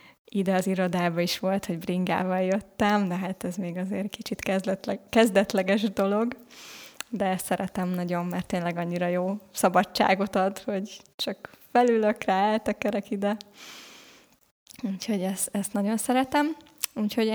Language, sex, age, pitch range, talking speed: Hungarian, female, 20-39, 185-220 Hz, 135 wpm